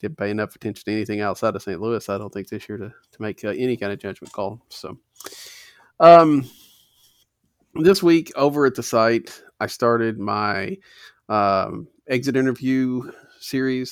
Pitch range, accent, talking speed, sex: 105-130 Hz, American, 170 wpm, male